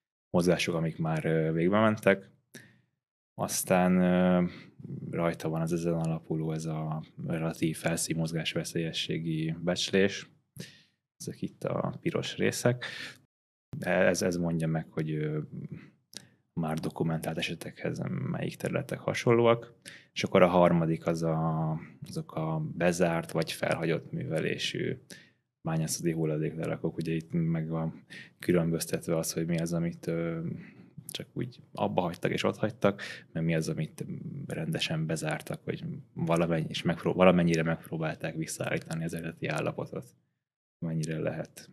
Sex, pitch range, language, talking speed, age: male, 80-85 Hz, Hungarian, 115 wpm, 20-39